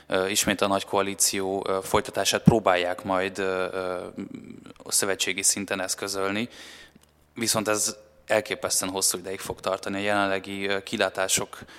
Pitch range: 95-105 Hz